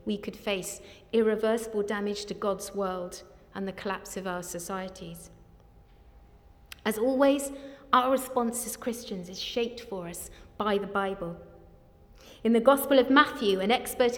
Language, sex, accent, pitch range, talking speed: English, female, British, 195-250 Hz, 145 wpm